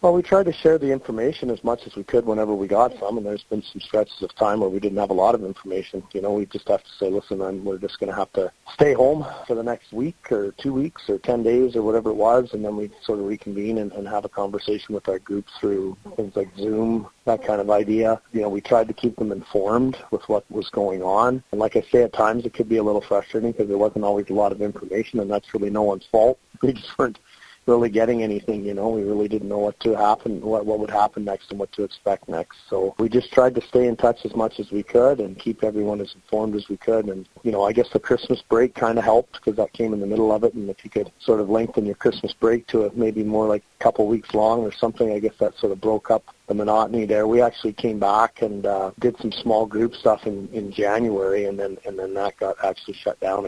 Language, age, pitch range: English, 40-59, 100-115 Hz